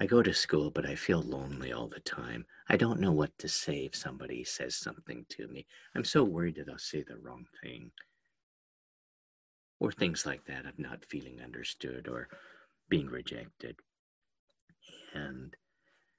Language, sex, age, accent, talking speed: English, male, 50-69, American, 165 wpm